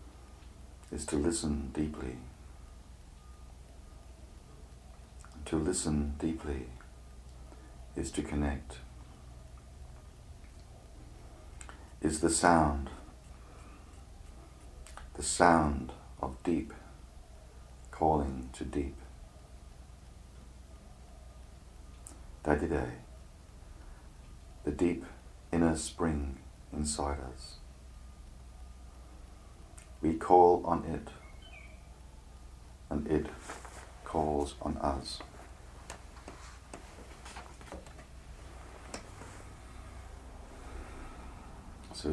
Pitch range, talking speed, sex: 65-75 Hz, 55 wpm, male